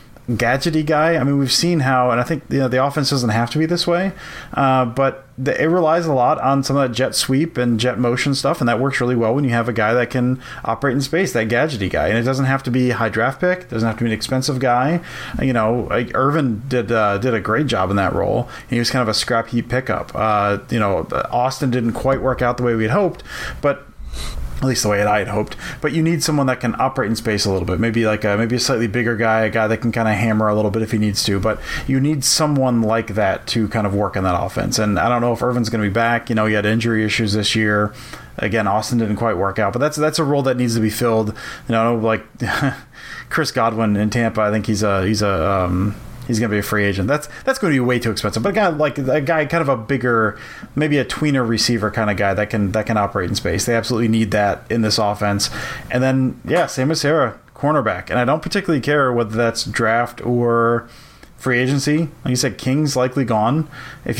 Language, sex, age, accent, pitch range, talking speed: English, male, 30-49, American, 110-135 Hz, 260 wpm